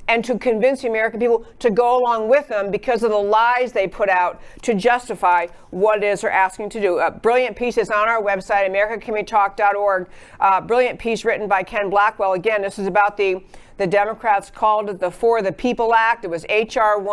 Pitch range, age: 200-240 Hz, 50-69